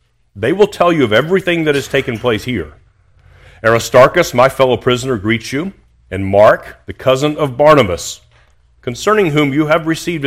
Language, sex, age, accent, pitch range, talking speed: English, male, 40-59, American, 105-135 Hz, 165 wpm